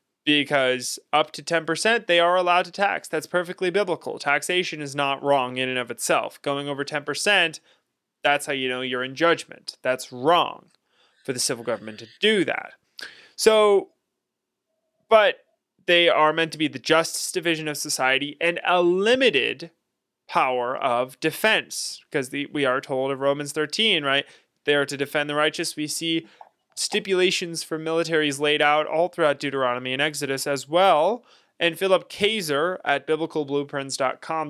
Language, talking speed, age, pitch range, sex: English, 160 wpm, 20-39, 140-180 Hz, male